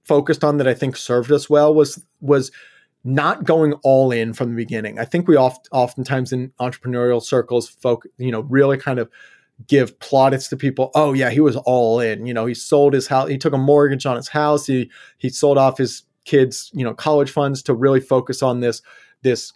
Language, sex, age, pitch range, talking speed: English, male, 30-49, 125-150 Hz, 215 wpm